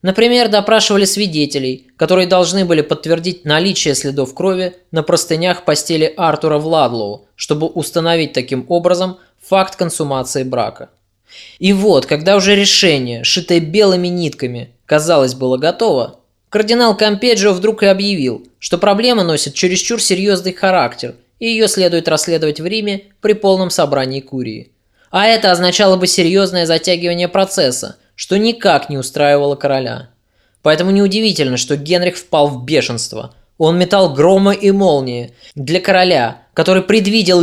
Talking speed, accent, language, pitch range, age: 130 wpm, native, Russian, 145-190 Hz, 20-39